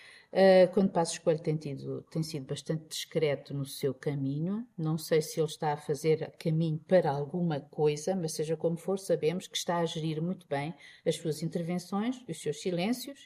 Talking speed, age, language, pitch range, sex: 180 wpm, 50-69, Portuguese, 150-185 Hz, female